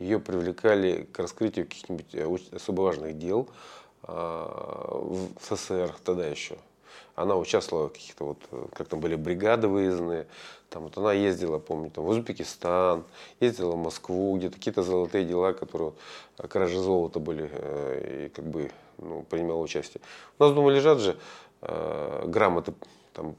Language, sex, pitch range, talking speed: Russian, male, 85-130 Hz, 140 wpm